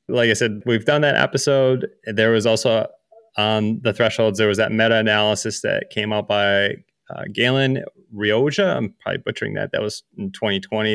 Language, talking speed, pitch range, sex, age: English, 185 wpm, 100-115 Hz, male, 30-49